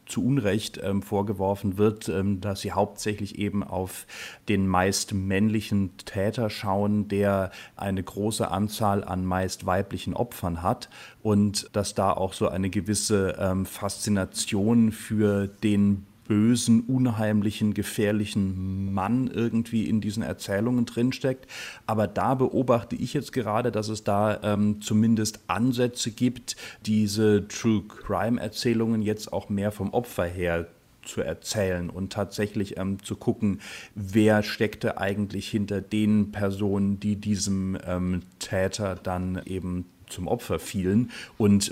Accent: German